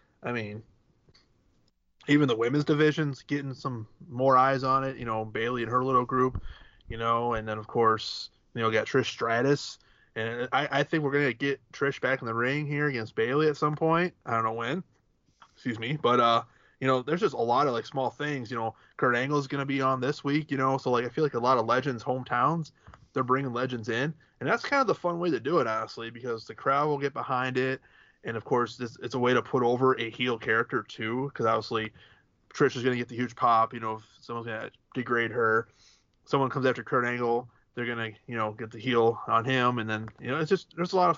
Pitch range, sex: 115-140 Hz, male